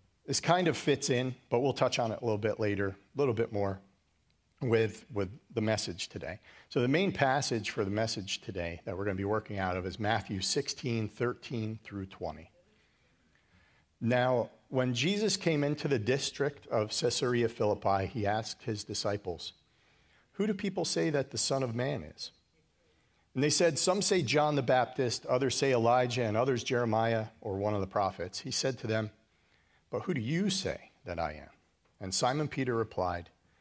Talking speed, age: 185 wpm, 50-69